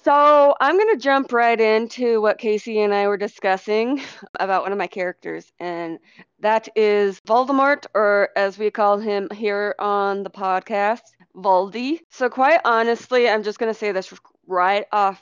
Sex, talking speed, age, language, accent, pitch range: female, 170 wpm, 20-39, English, American, 190-230 Hz